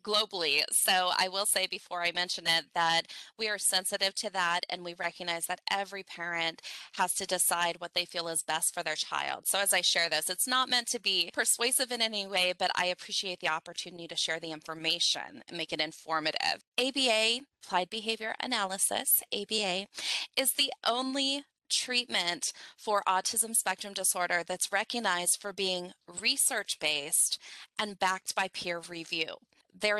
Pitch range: 180-235 Hz